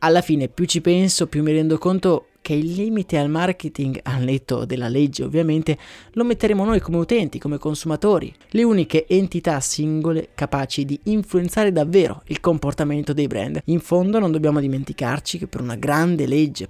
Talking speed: 175 wpm